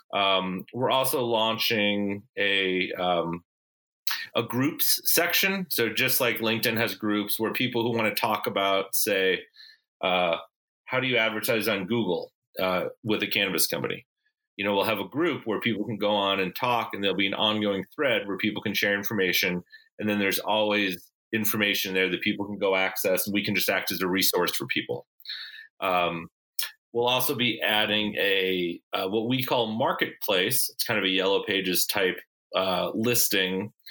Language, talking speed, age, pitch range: English, 175 wpm, 30-49, 95-120 Hz